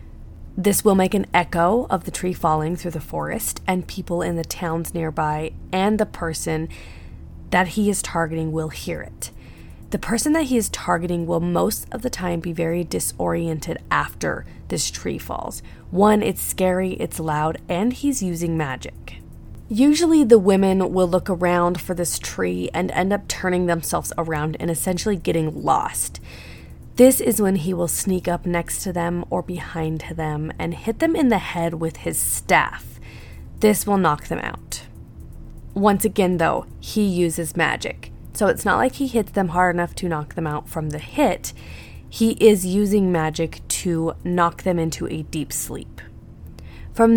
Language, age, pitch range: English, 20-39, 160-200 Hz